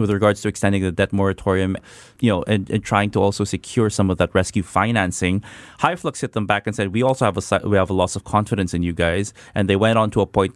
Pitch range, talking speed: 95-115 Hz, 255 wpm